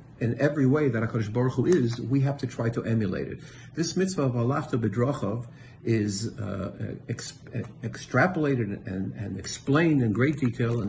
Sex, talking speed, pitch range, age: male, 170 wpm, 110-145 Hz, 60-79